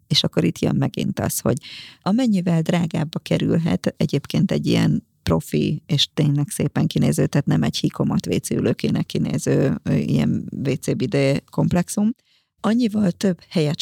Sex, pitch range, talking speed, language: female, 155-195 Hz, 130 wpm, Hungarian